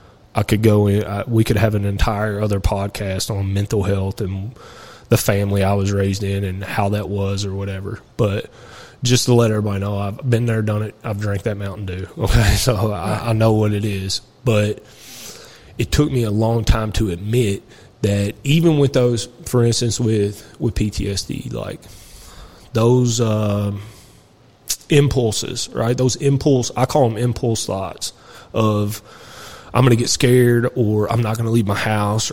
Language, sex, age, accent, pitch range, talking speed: English, male, 20-39, American, 105-125 Hz, 175 wpm